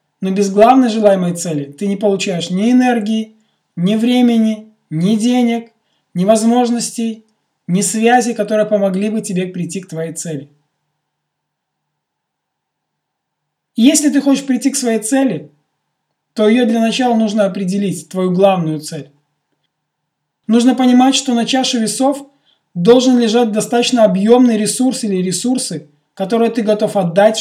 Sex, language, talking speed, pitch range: male, Russian, 130 wpm, 160-235 Hz